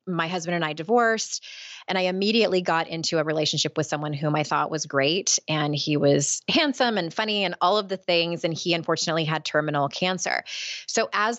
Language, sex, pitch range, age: English, female, 155-200 Hz, 20-39